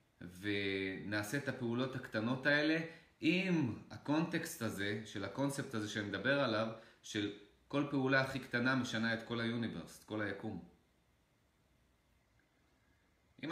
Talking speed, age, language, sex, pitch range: 120 wpm, 30-49, Hebrew, male, 105-135 Hz